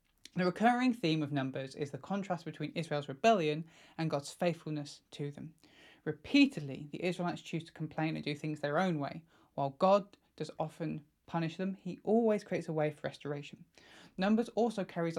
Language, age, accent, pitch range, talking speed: English, 20-39, British, 150-190 Hz, 175 wpm